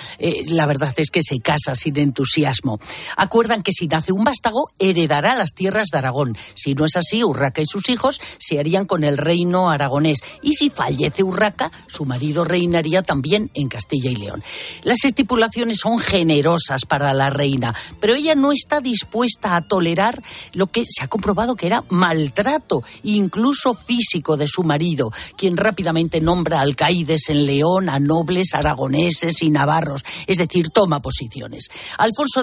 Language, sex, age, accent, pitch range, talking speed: Spanish, female, 40-59, Spanish, 150-210 Hz, 165 wpm